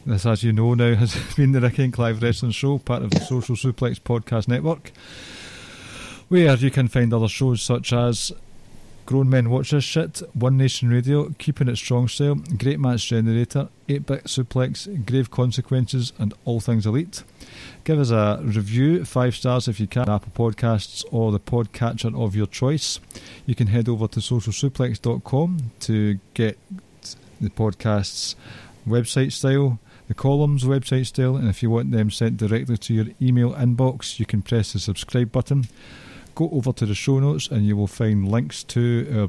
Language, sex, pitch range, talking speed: English, male, 110-130 Hz, 175 wpm